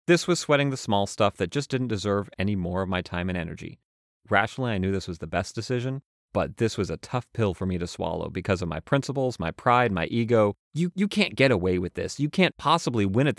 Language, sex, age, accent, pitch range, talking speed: English, male, 30-49, American, 90-120 Hz, 245 wpm